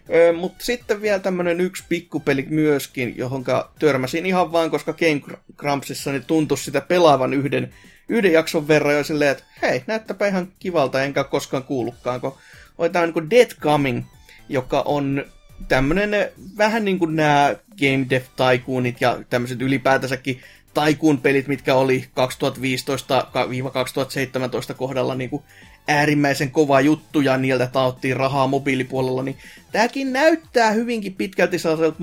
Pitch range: 130-170 Hz